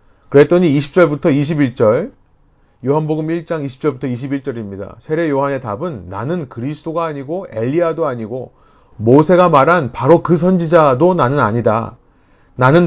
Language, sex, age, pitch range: Korean, male, 30-49, 125-170 Hz